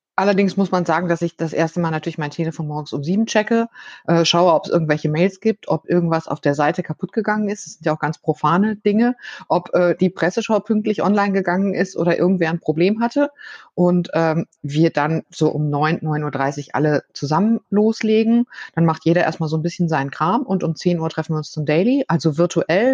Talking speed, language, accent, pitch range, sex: 210 wpm, German, German, 150-190 Hz, female